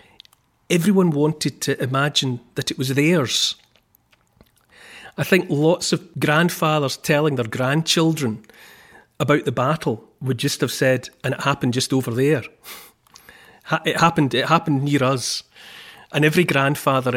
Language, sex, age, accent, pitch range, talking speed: English, male, 40-59, British, 125-155 Hz, 135 wpm